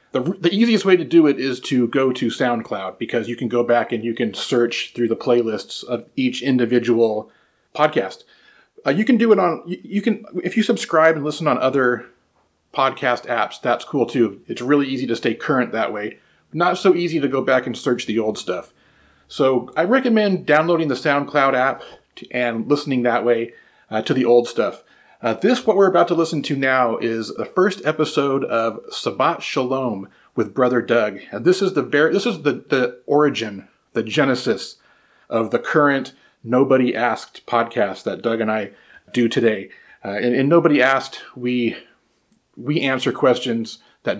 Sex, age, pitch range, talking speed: male, 30-49, 120-160 Hz, 185 wpm